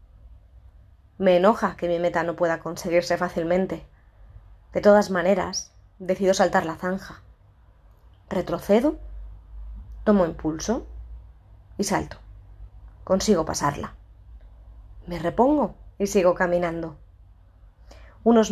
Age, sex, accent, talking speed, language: 20-39, female, Spanish, 95 wpm, Spanish